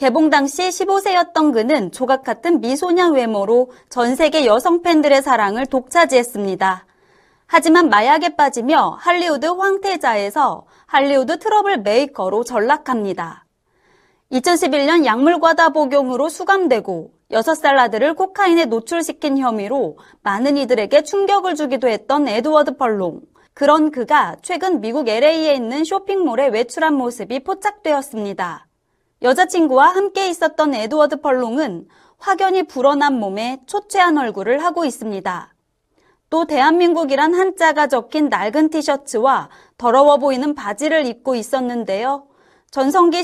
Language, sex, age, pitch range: Korean, female, 30-49, 245-330 Hz